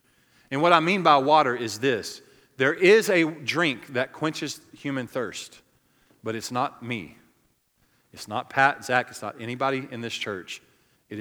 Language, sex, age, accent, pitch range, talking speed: English, male, 40-59, American, 100-130 Hz, 165 wpm